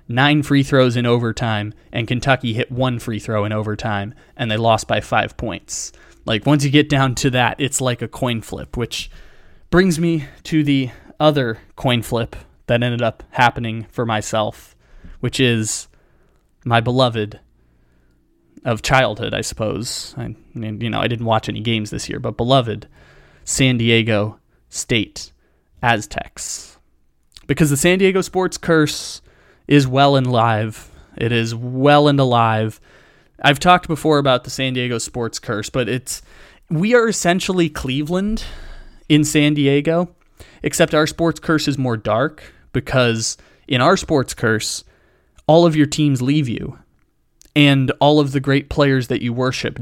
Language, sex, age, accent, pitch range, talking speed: English, male, 20-39, American, 110-145 Hz, 155 wpm